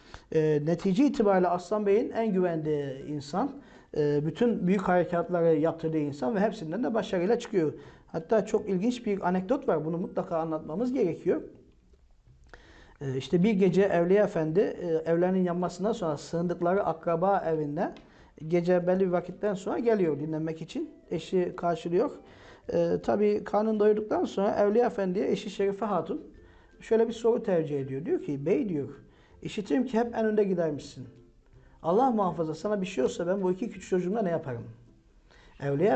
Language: Turkish